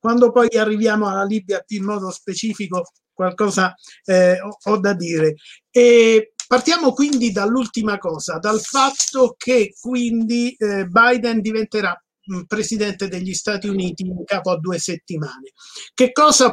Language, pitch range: Italian, 185-235 Hz